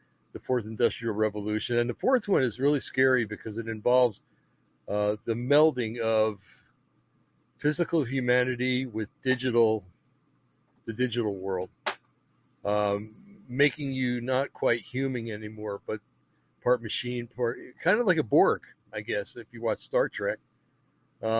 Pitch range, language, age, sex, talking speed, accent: 110-135 Hz, English, 60-79, male, 135 wpm, American